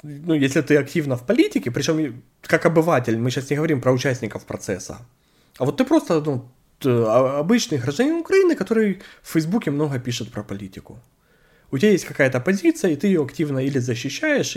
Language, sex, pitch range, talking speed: Russian, male, 120-155 Hz, 175 wpm